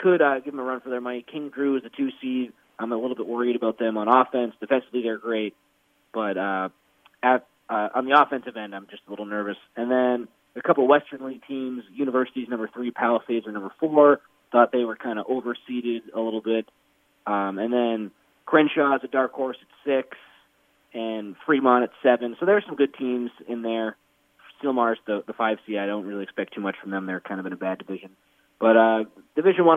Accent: American